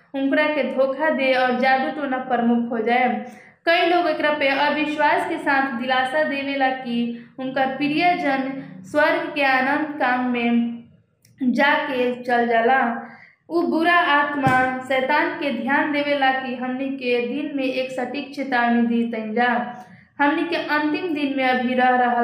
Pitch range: 250-295 Hz